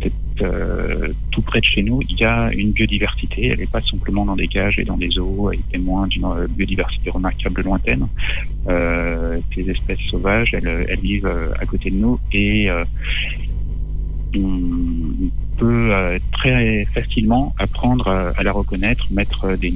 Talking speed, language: 150 wpm, French